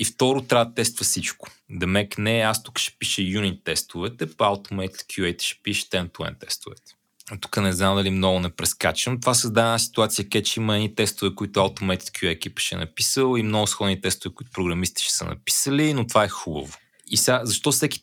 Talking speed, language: 205 wpm, Bulgarian